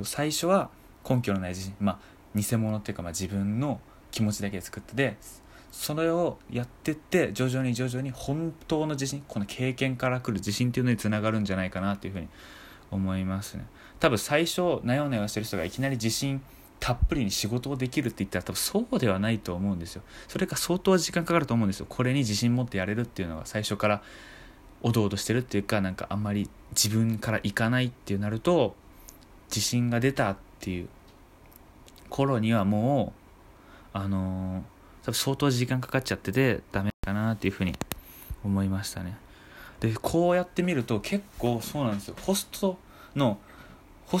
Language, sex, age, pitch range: Japanese, male, 20-39, 100-135 Hz